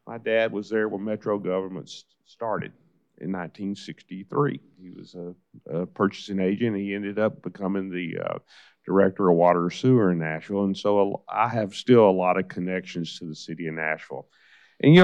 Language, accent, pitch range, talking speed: English, American, 90-110 Hz, 185 wpm